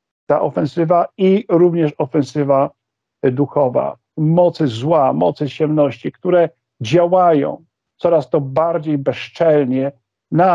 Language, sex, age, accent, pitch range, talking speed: Polish, male, 50-69, native, 140-175 Hz, 95 wpm